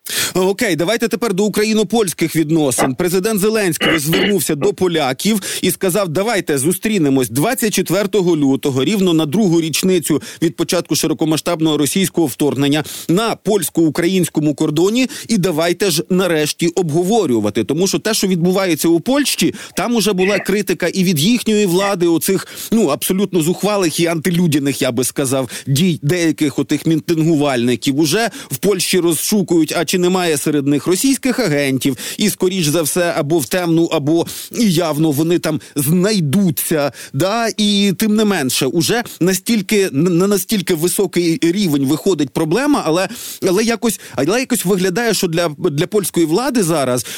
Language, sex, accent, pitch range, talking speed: Ukrainian, male, native, 160-200 Hz, 140 wpm